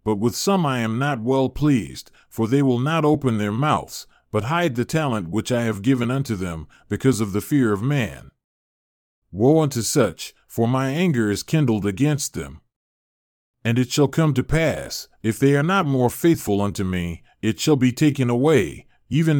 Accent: American